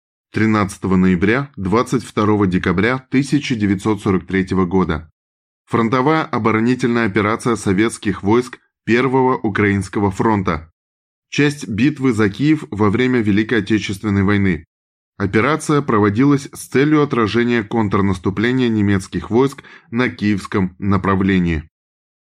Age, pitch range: 20-39, 100-130 Hz